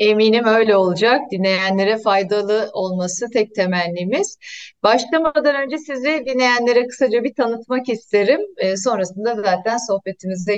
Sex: female